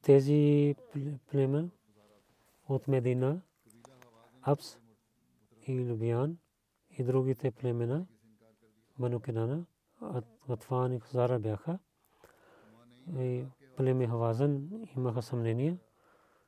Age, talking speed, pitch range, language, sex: 40-59, 65 wpm, 115-135 Hz, Bulgarian, male